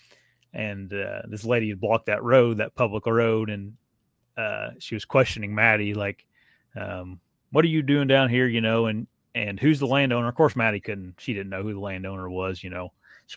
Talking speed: 205 wpm